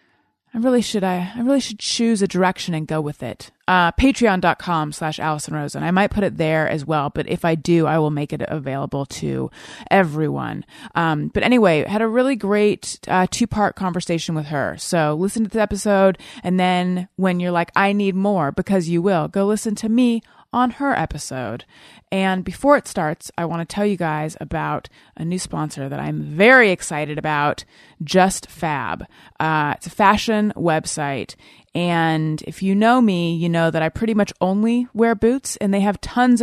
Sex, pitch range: female, 160-210 Hz